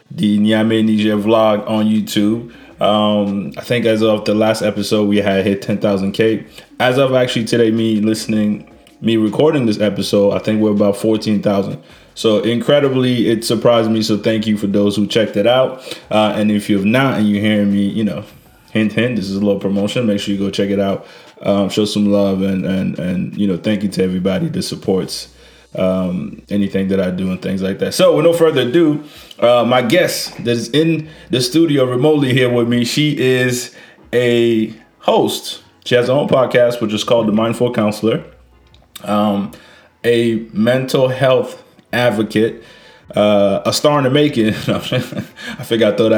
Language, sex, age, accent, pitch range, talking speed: English, male, 20-39, American, 100-120 Hz, 190 wpm